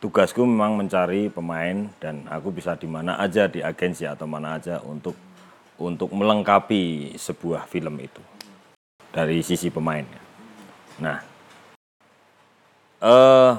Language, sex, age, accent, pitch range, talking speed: Indonesian, male, 40-59, native, 80-105 Hz, 115 wpm